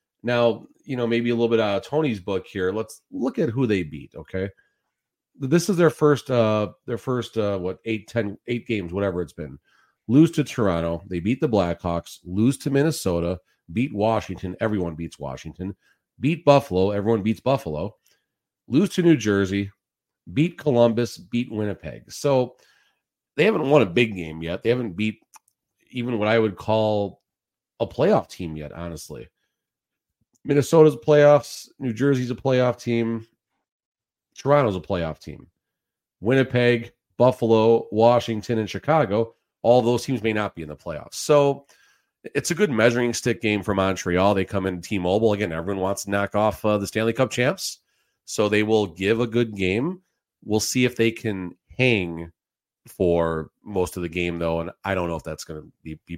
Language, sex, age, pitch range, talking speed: English, male, 40-59, 95-125 Hz, 170 wpm